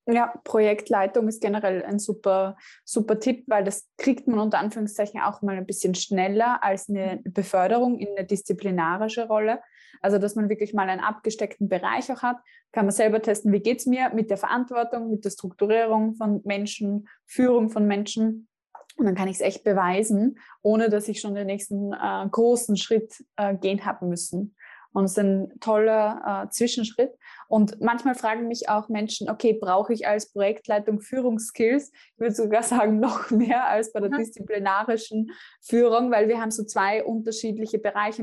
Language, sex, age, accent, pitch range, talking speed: German, female, 20-39, German, 200-230 Hz, 175 wpm